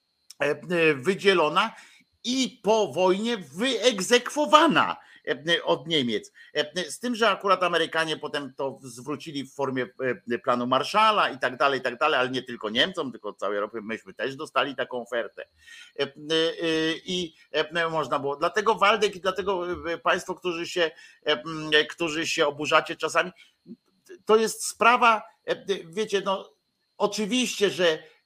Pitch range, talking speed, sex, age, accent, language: 150-205 Hz, 125 wpm, male, 50-69, native, Polish